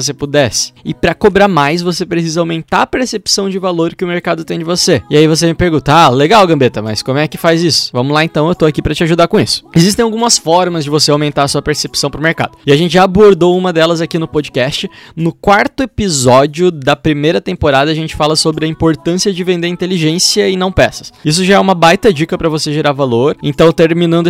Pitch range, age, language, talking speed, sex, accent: 150-180 Hz, 20-39, Portuguese, 235 wpm, male, Brazilian